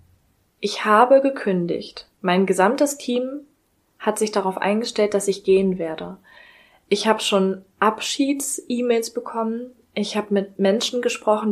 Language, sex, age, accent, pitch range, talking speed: German, female, 20-39, German, 190-220 Hz, 125 wpm